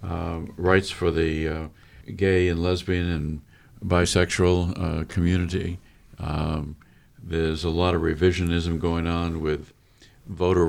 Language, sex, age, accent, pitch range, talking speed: English, male, 50-69, American, 85-100 Hz, 125 wpm